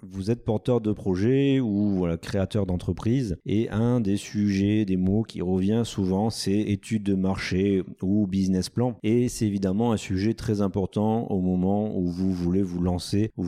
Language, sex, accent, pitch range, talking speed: French, male, French, 90-110 Hz, 180 wpm